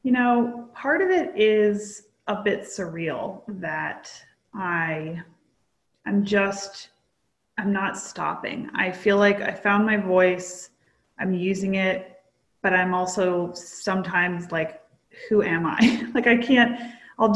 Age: 30-49